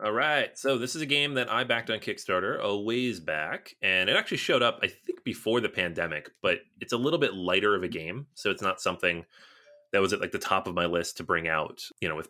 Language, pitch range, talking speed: English, 90-125 Hz, 260 wpm